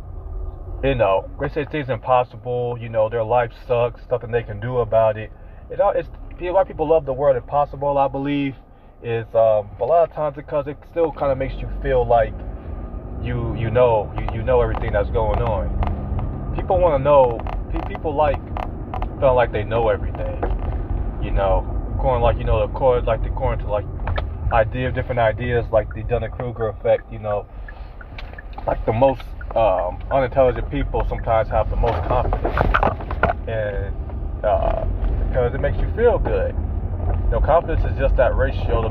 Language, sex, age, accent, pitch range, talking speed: English, male, 30-49, American, 95-125 Hz, 175 wpm